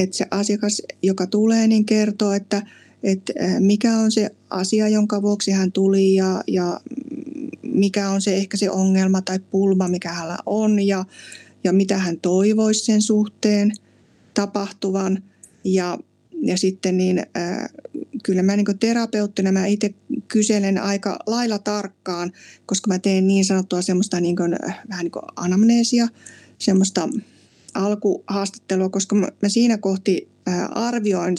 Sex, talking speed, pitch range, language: female, 130 wpm, 185-210 Hz, Finnish